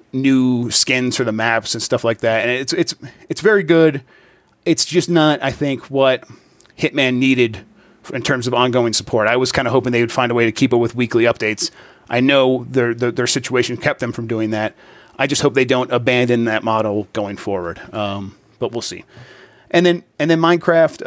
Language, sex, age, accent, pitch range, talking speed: English, male, 30-49, American, 120-150 Hz, 210 wpm